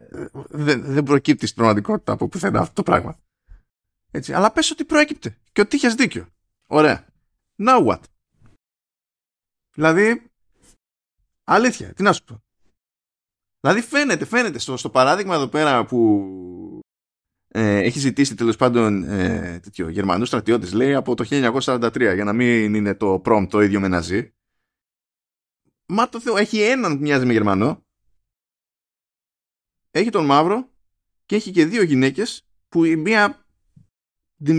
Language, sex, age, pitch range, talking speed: Greek, male, 20-39, 95-155 Hz, 130 wpm